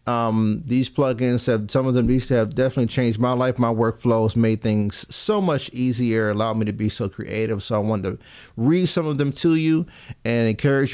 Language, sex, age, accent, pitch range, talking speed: English, male, 30-49, American, 115-140 Hz, 210 wpm